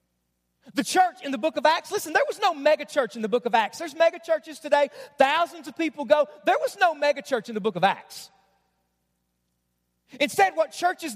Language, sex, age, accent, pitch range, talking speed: English, male, 40-59, American, 260-325 Hz, 210 wpm